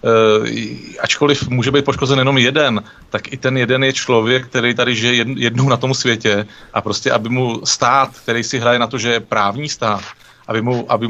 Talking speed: 185 wpm